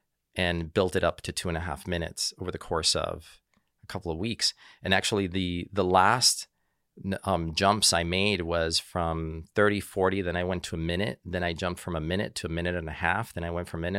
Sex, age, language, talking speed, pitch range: male, 40-59, English, 235 wpm, 85-100 Hz